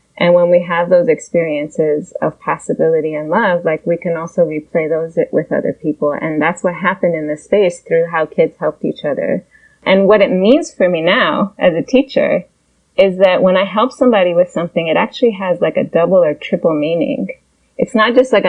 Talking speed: 205 wpm